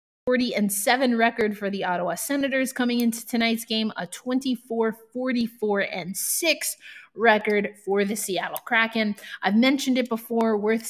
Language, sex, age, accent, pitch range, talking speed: English, female, 20-39, American, 195-240 Hz, 120 wpm